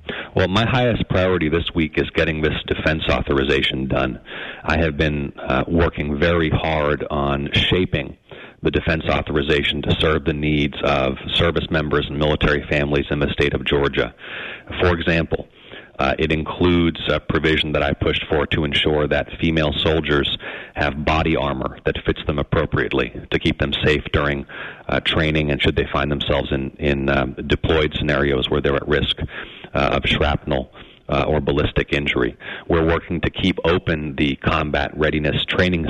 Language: English